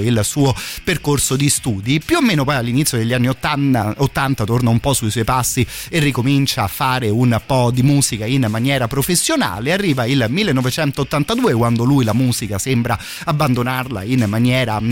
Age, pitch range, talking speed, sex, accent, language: 30-49, 115-145 Hz, 170 wpm, male, native, Italian